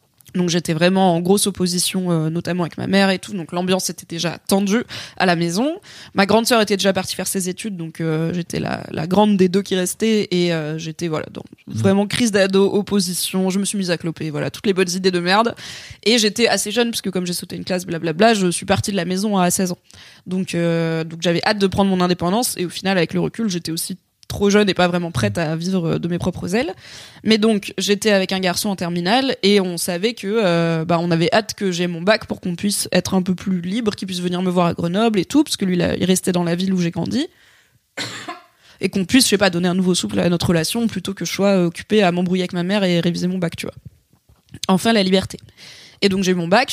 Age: 20-39